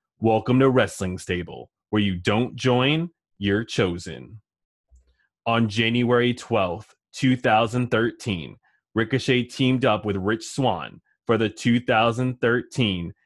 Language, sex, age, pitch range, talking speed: English, male, 20-39, 100-125 Hz, 105 wpm